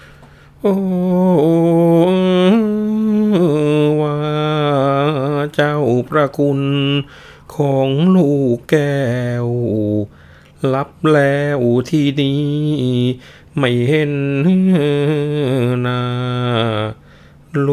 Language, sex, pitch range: Thai, male, 110-145 Hz